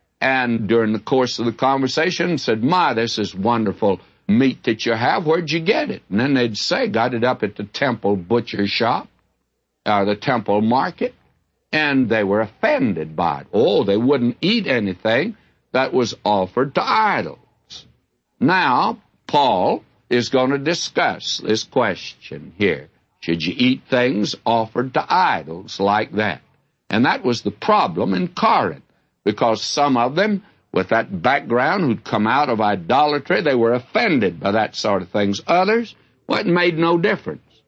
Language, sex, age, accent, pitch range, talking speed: English, male, 60-79, American, 105-155 Hz, 165 wpm